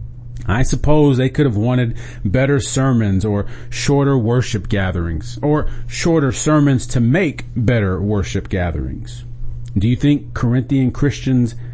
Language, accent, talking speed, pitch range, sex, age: English, American, 130 wpm, 110-130 Hz, male, 40-59